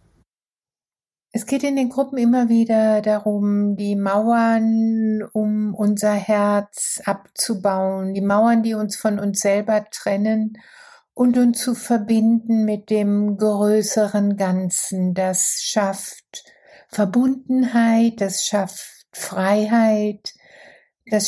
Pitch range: 195-230 Hz